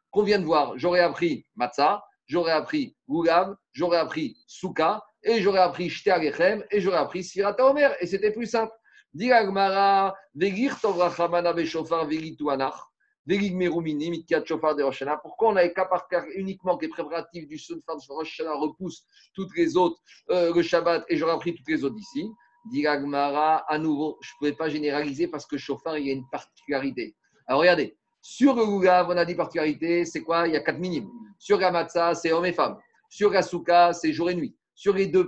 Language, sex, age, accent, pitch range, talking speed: French, male, 50-69, French, 155-195 Hz, 180 wpm